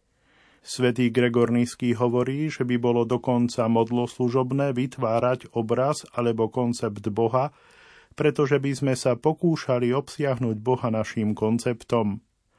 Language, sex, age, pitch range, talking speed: Slovak, male, 40-59, 115-140 Hz, 110 wpm